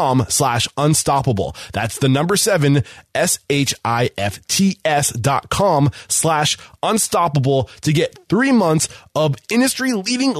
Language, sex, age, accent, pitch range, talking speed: English, male, 20-39, American, 115-145 Hz, 135 wpm